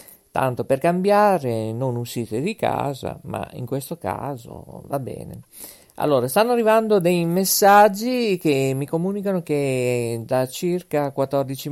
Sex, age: male, 50-69